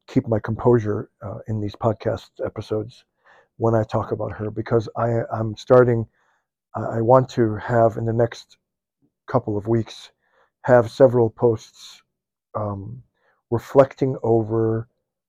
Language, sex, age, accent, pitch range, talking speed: English, male, 50-69, American, 110-120 Hz, 130 wpm